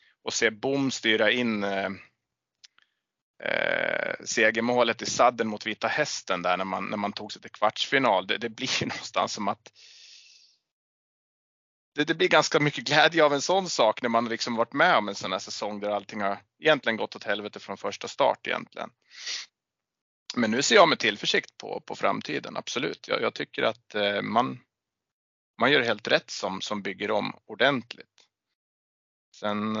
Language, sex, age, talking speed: Swedish, male, 30-49, 175 wpm